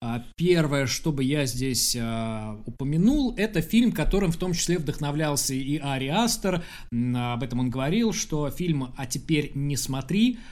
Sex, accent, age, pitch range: male, native, 20-39, 125-165 Hz